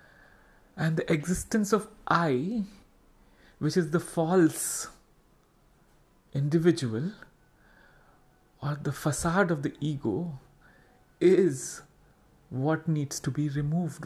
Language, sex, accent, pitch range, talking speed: English, male, Indian, 130-170 Hz, 95 wpm